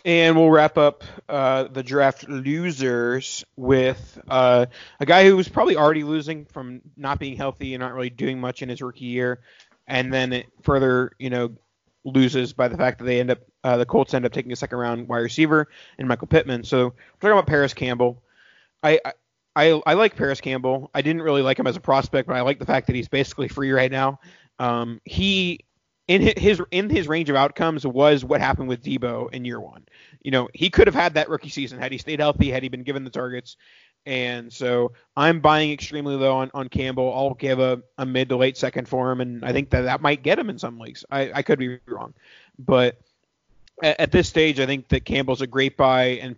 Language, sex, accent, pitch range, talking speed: English, male, American, 125-145 Hz, 225 wpm